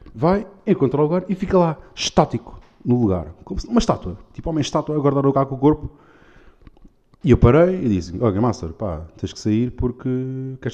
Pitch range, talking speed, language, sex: 95-130 Hz, 200 wpm, Portuguese, male